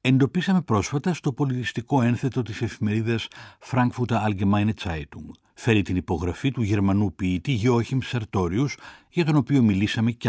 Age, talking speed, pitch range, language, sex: 60-79, 135 wpm, 95-125 Hz, Greek, male